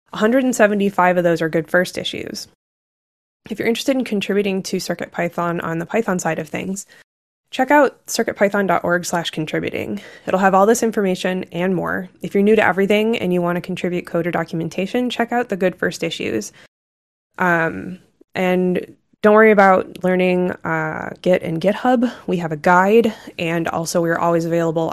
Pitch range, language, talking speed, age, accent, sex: 170-205 Hz, English, 165 wpm, 20-39, American, female